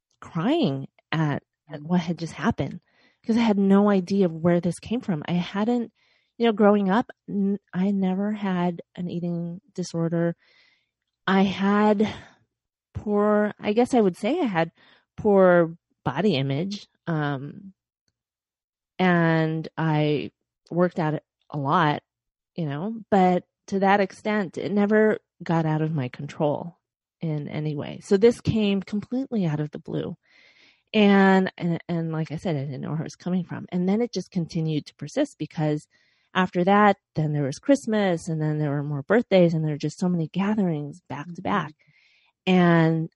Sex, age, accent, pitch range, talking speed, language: female, 30-49, American, 160-200 Hz, 165 wpm, English